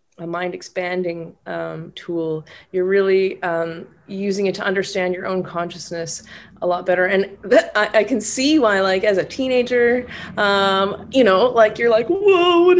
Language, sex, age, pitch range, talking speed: English, female, 20-39, 175-220 Hz, 175 wpm